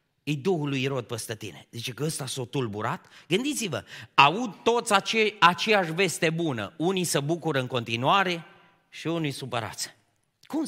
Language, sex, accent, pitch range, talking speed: Romanian, male, native, 155-260 Hz, 145 wpm